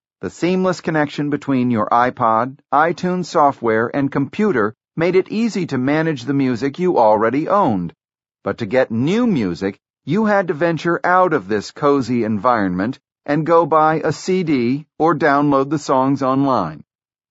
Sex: male